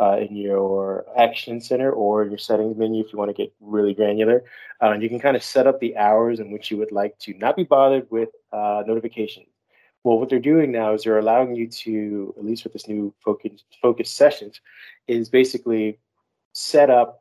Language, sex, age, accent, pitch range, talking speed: English, male, 30-49, American, 105-120 Hz, 215 wpm